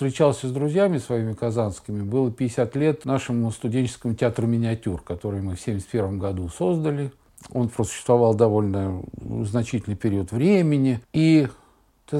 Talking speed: 130 wpm